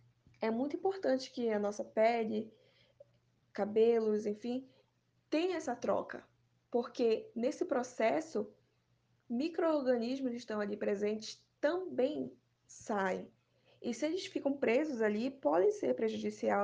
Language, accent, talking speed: Portuguese, Brazilian, 110 wpm